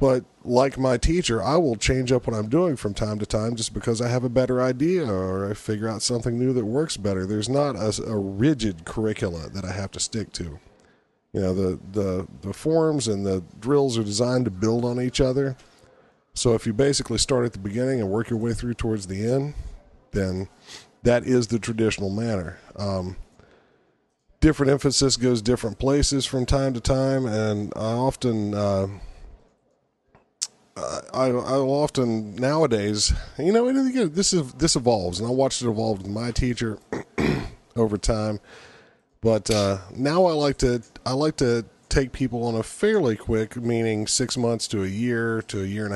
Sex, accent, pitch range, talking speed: male, American, 105-130 Hz, 185 wpm